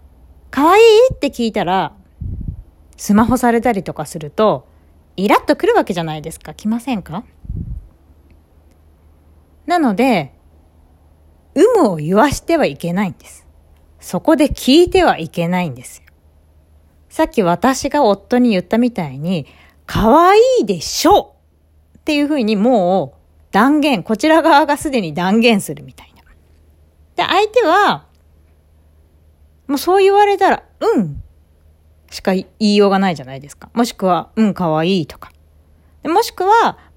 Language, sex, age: Japanese, female, 40-59